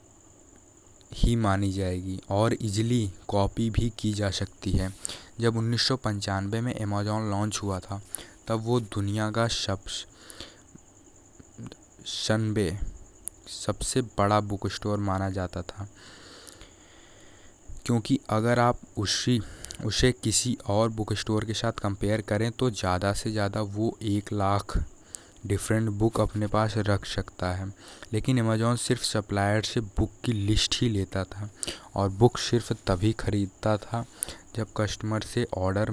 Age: 20-39